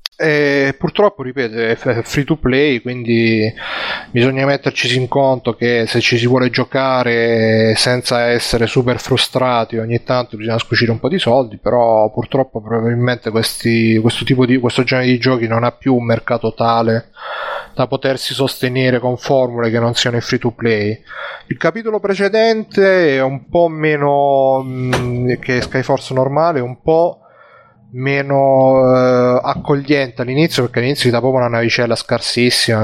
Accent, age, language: native, 30-49, Italian